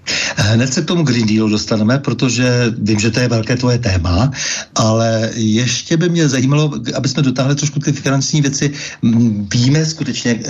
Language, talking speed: Czech, 165 wpm